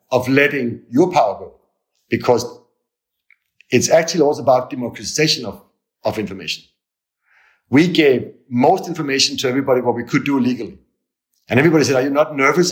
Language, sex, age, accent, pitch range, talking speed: English, male, 50-69, German, 120-155 Hz, 150 wpm